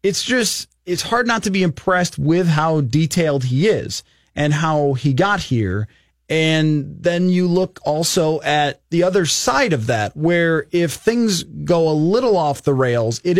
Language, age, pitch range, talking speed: English, 30-49, 140-185 Hz, 175 wpm